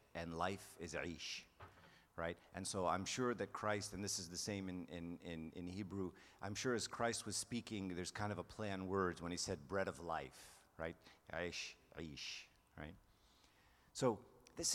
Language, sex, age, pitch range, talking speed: English, male, 50-69, 85-110 Hz, 185 wpm